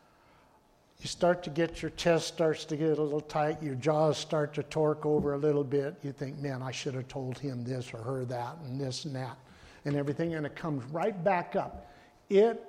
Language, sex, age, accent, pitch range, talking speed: English, male, 60-79, American, 135-160 Hz, 220 wpm